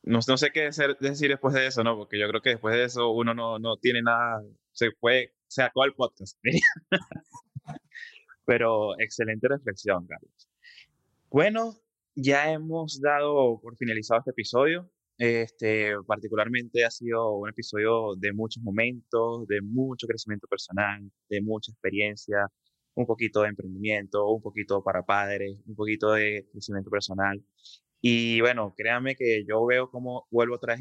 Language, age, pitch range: Spanish, 20-39, 105-125 Hz